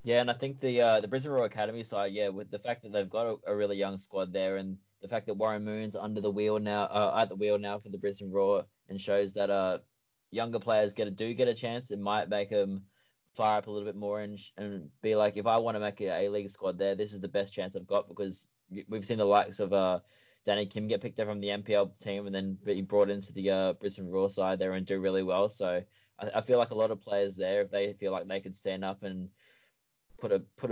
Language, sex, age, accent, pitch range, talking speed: English, male, 20-39, Australian, 95-105 Hz, 275 wpm